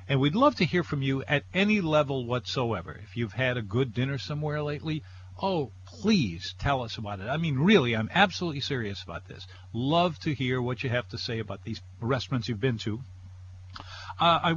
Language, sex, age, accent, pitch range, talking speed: English, male, 50-69, American, 110-155 Hz, 200 wpm